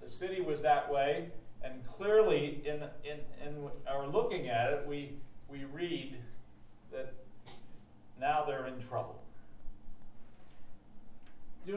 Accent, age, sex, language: American, 50-69, male, English